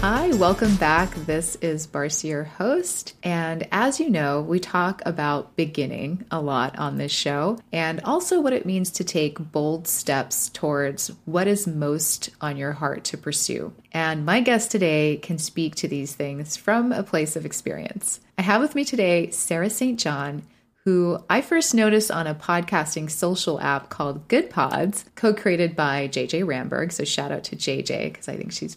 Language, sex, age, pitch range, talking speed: English, female, 30-49, 155-205 Hz, 180 wpm